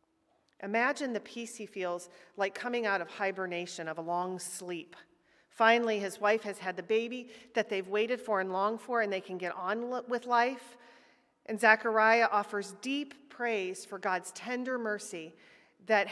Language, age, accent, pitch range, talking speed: English, 40-59, American, 195-235 Hz, 170 wpm